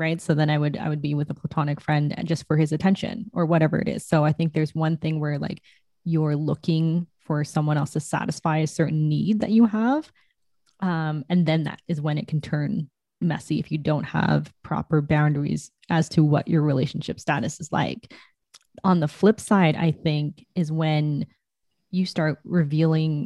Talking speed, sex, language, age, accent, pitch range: 200 wpm, female, English, 20-39, American, 155-180 Hz